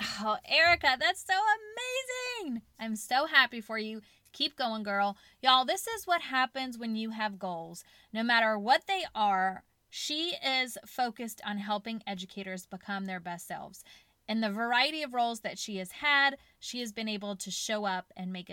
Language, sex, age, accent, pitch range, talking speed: English, female, 20-39, American, 200-270 Hz, 180 wpm